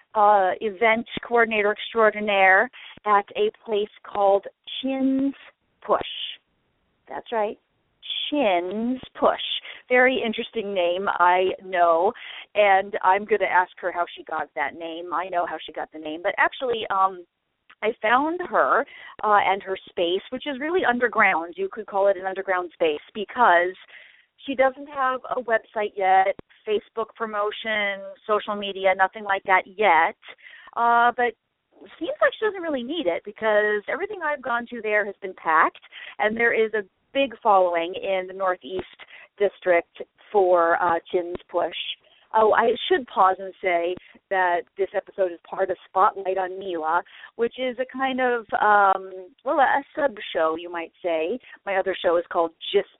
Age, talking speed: 40-59, 155 wpm